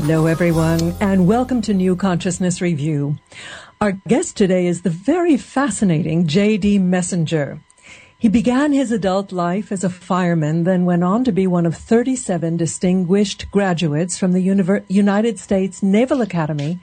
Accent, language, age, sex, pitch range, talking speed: American, English, 60-79, female, 175-210 Hz, 150 wpm